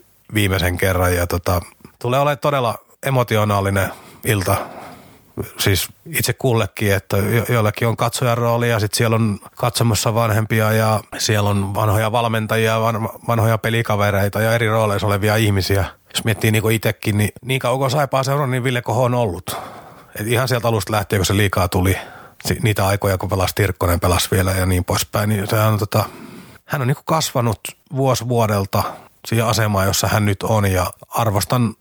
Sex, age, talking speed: male, 30-49, 165 wpm